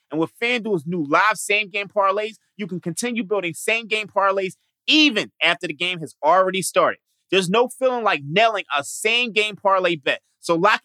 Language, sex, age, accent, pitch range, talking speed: English, male, 30-49, American, 170-220 Hz, 170 wpm